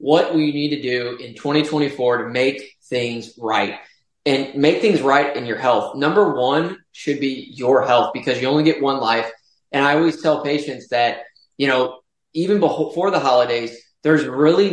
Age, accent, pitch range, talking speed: 20-39, American, 125-150 Hz, 180 wpm